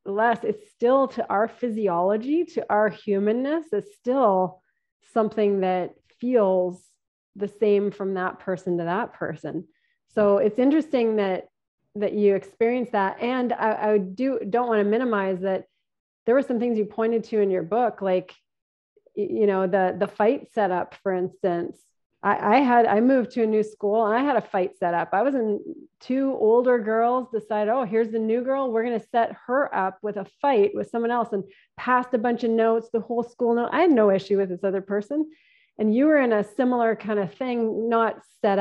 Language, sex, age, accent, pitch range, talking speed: English, female, 30-49, American, 195-245 Hz, 195 wpm